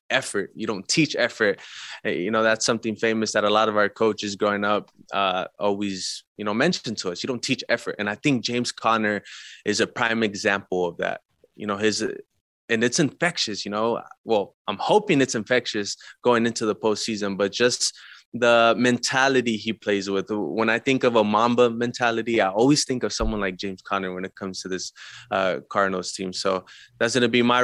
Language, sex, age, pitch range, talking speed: English, male, 20-39, 105-125 Hz, 200 wpm